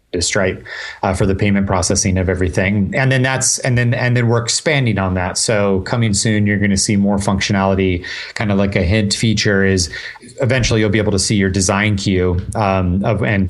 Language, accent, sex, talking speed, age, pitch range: English, American, male, 210 wpm, 30-49, 95-110 Hz